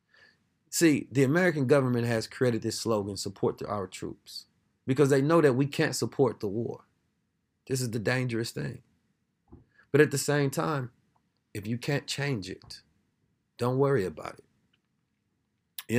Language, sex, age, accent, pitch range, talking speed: English, male, 30-49, American, 110-130 Hz, 155 wpm